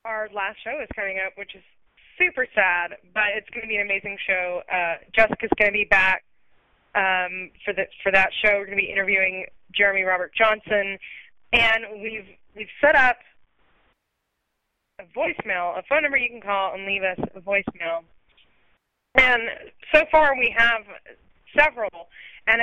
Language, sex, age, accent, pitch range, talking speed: English, female, 20-39, American, 190-225 Hz, 165 wpm